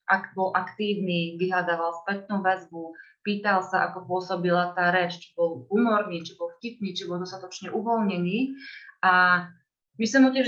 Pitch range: 185-225 Hz